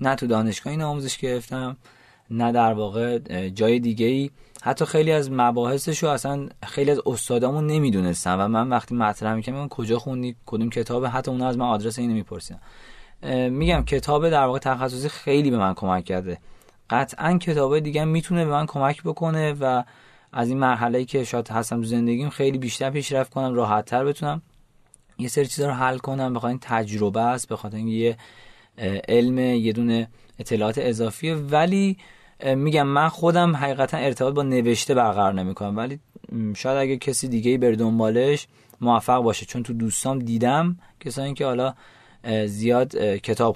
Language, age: Persian, 20-39